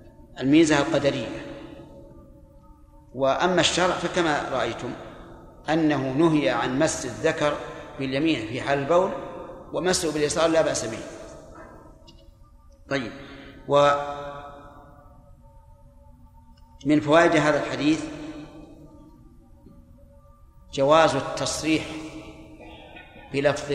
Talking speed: 70 wpm